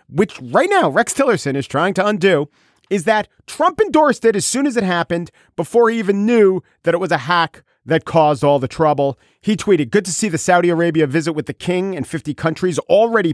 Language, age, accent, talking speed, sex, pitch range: English, 40-59, American, 220 wpm, male, 125-175 Hz